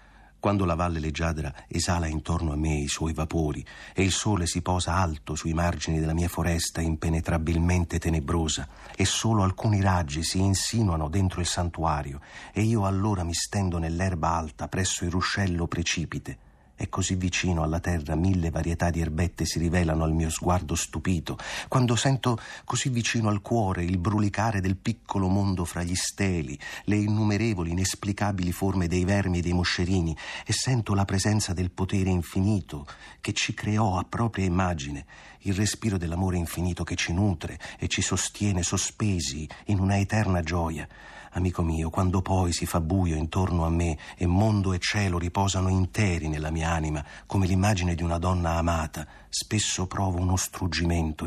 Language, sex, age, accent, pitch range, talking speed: Italian, male, 40-59, native, 85-100 Hz, 165 wpm